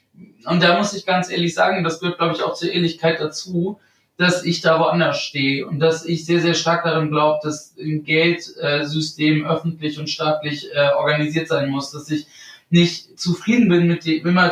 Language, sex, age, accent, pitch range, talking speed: German, male, 20-39, German, 150-175 Hz, 185 wpm